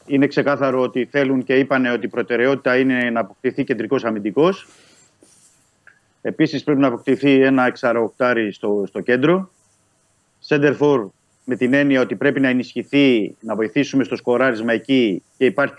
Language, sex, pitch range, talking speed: Greek, male, 120-150 Hz, 145 wpm